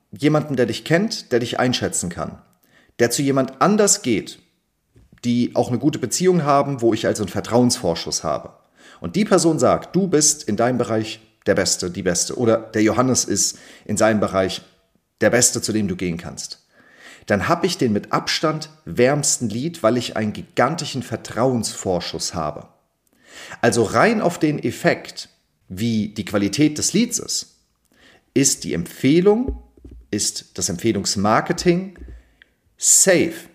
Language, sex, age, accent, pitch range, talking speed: German, male, 40-59, German, 110-155 Hz, 150 wpm